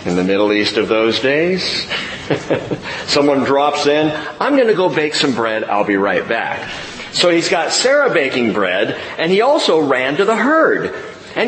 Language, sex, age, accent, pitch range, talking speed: English, male, 40-59, American, 135-185 Hz, 185 wpm